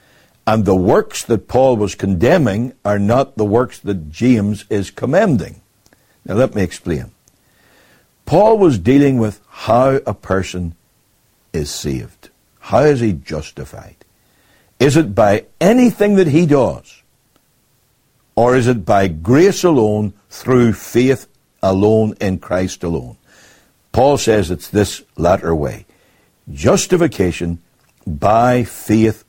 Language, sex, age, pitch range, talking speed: English, male, 60-79, 95-135 Hz, 125 wpm